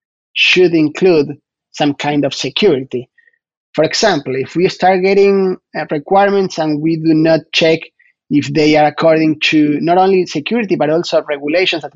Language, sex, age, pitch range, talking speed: English, male, 30-49, 150-190 Hz, 150 wpm